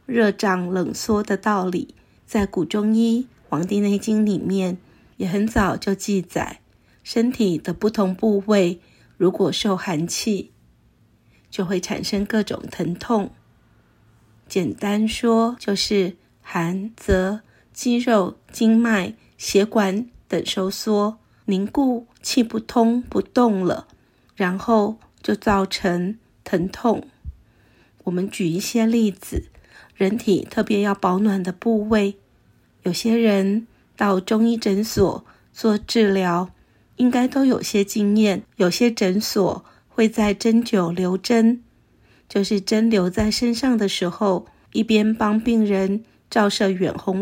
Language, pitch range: Chinese, 190-225 Hz